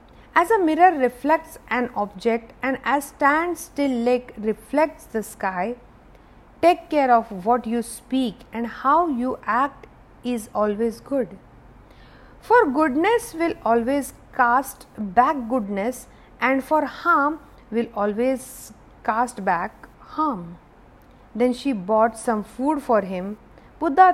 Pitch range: 225-310 Hz